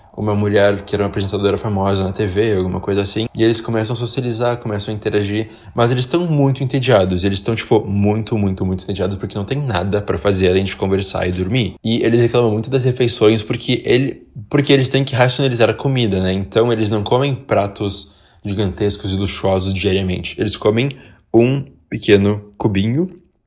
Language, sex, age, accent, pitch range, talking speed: Portuguese, male, 20-39, Brazilian, 100-125 Hz, 185 wpm